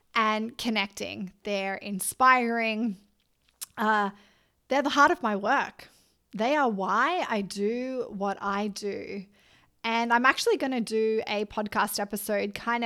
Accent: Australian